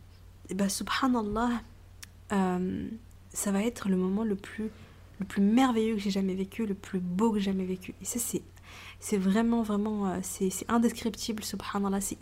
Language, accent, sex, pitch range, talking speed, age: French, French, female, 190-235 Hz, 175 wpm, 20-39